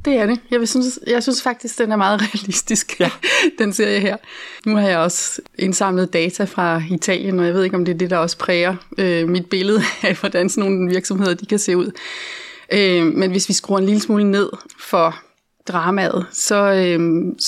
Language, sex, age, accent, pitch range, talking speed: Danish, female, 30-49, native, 175-205 Hz, 205 wpm